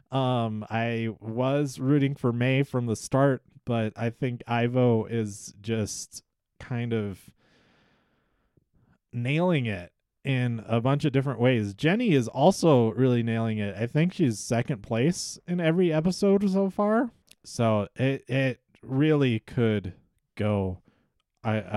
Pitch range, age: 110-140 Hz, 30-49